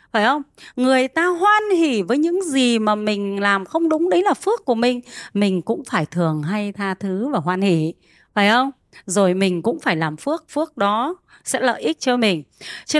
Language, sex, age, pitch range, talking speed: Vietnamese, female, 20-39, 195-280 Hz, 210 wpm